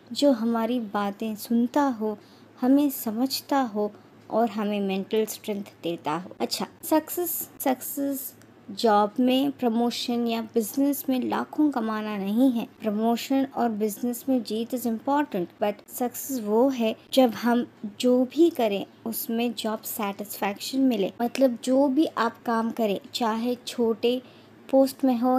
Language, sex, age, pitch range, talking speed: Hindi, male, 20-39, 220-265 Hz, 135 wpm